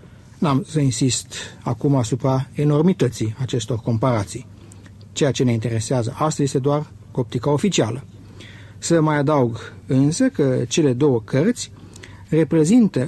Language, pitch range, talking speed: Romanian, 115-150 Hz, 120 wpm